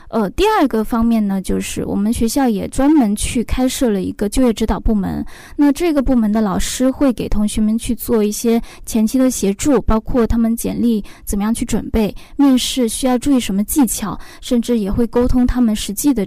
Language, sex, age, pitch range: Chinese, female, 10-29, 215-255 Hz